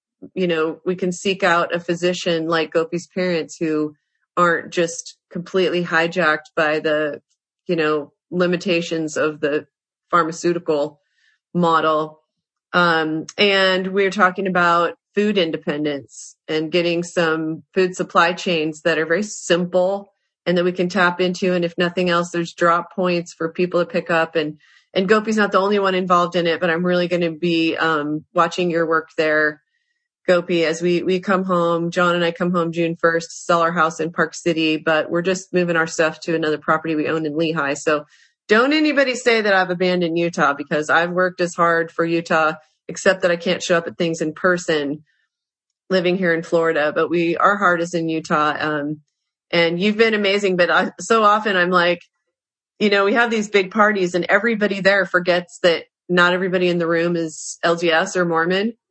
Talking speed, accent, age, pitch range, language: 185 wpm, American, 30-49, 160-185 Hz, English